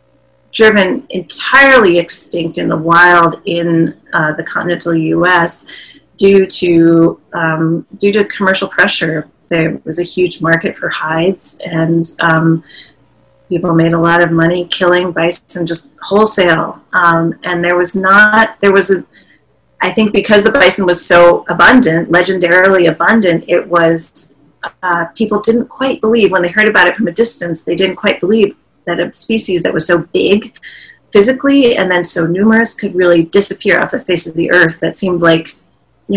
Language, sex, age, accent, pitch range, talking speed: English, female, 30-49, American, 170-200 Hz, 165 wpm